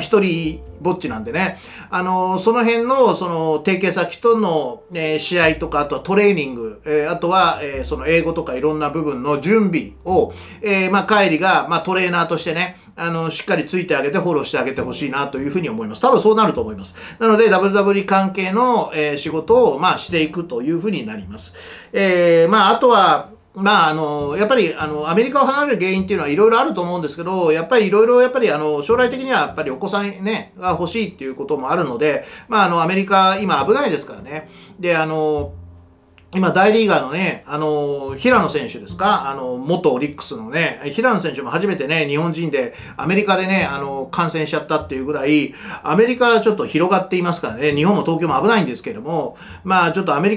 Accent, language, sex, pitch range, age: native, Japanese, male, 155-200 Hz, 40-59